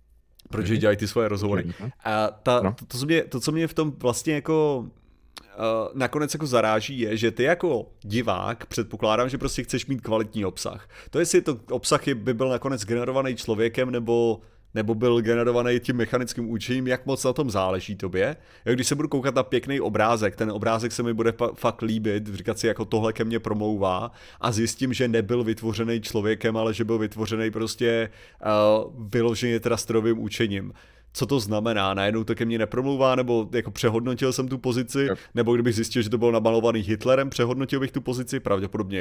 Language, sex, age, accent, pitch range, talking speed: Czech, male, 30-49, native, 110-130 Hz, 175 wpm